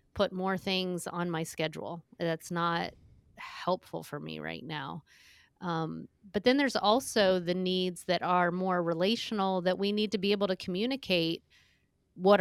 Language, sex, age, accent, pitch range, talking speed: English, female, 30-49, American, 175-200 Hz, 160 wpm